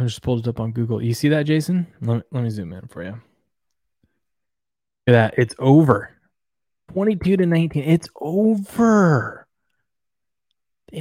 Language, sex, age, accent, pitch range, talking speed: English, male, 20-39, American, 110-145 Hz, 165 wpm